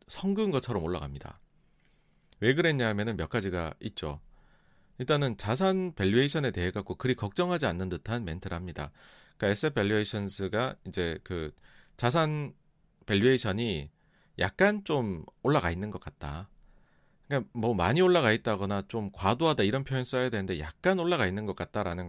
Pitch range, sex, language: 95-130 Hz, male, Korean